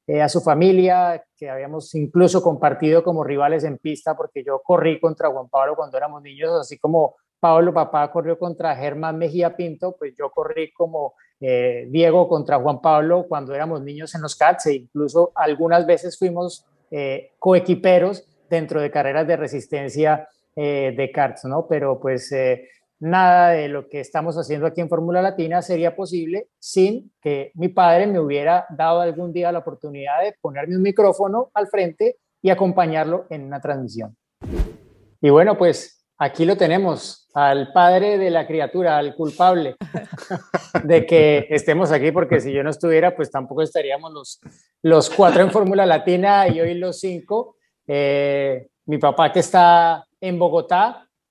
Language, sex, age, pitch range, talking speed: Spanish, male, 30-49, 145-180 Hz, 165 wpm